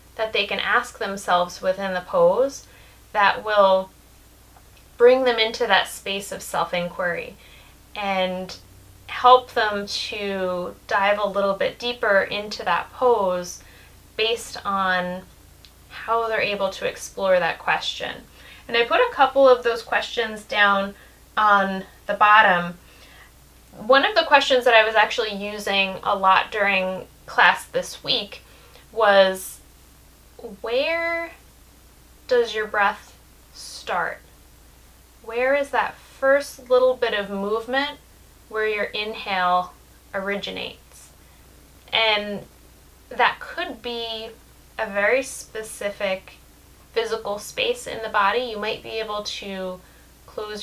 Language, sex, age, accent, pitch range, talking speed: English, female, 20-39, American, 185-235 Hz, 120 wpm